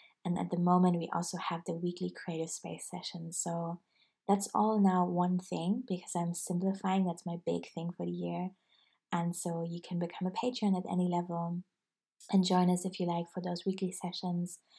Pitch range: 175-195 Hz